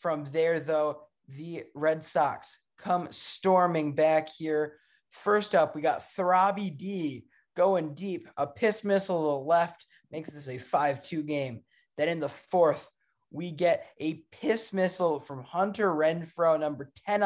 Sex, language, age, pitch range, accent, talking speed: male, English, 20-39, 150-180 Hz, American, 150 wpm